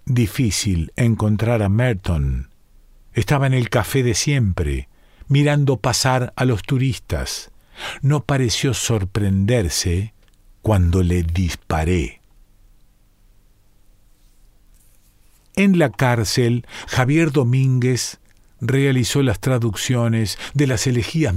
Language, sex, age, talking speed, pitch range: Spanish, male, 50-69, 90 wpm, 105-145 Hz